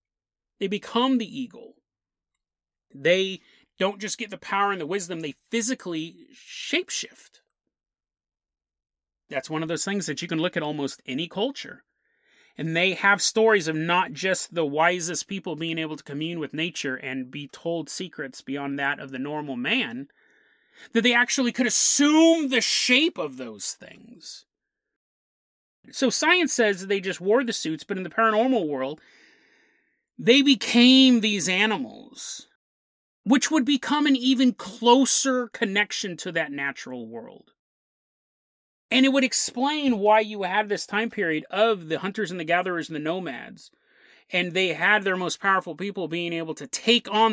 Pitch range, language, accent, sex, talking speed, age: 160-245 Hz, English, American, male, 160 wpm, 30-49